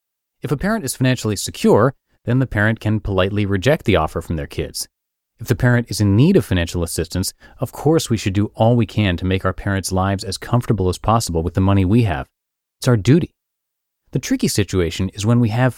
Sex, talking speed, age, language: male, 220 wpm, 30-49, English